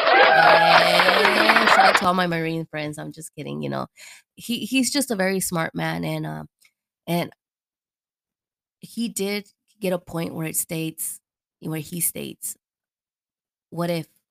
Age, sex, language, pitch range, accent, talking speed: 20-39, female, English, 160-185 Hz, American, 145 wpm